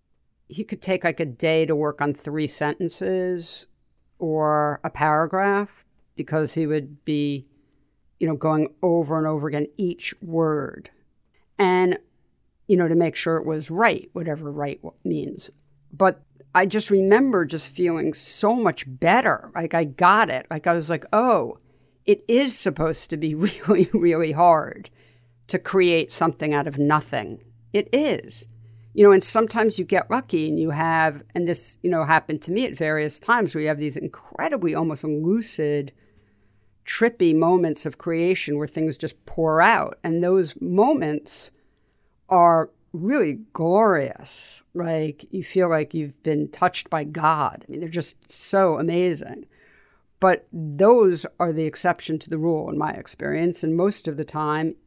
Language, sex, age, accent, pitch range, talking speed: English, female, 60-79, American, 150-180 Hz, 160 wpm